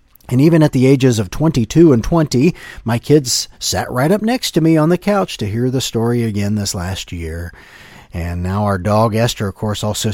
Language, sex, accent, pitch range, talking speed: English, male, American, 100-125 Hz, 215 wpm